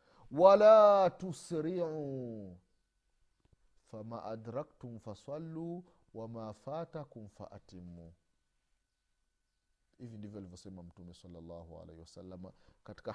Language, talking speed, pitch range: Swahili, 85 wpm, 95-160 Hz